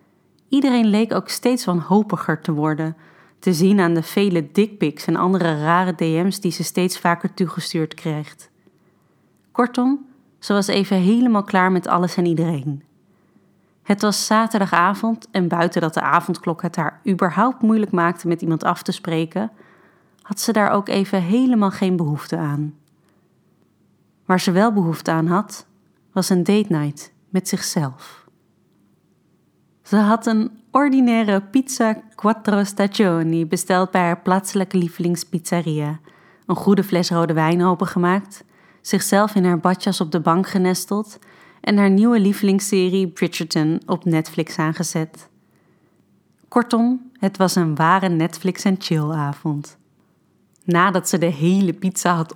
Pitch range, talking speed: 170-200 Hz, 140 wpm